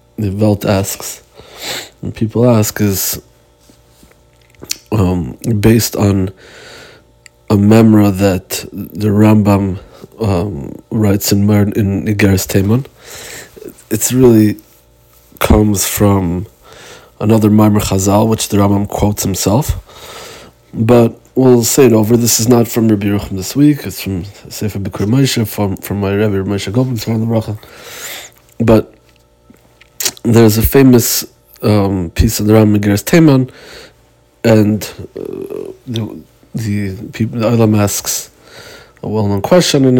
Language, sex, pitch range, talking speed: Hebrew, male, 100-115 Hz, 125 wpm